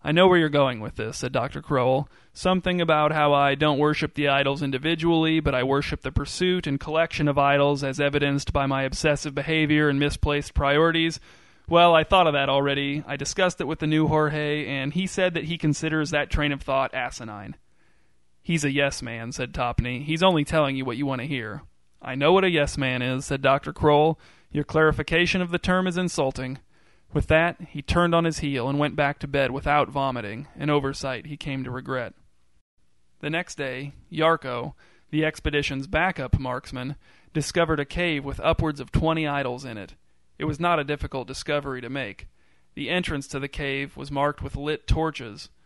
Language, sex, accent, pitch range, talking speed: English, male, American, 135-155 Hz, 195 wpm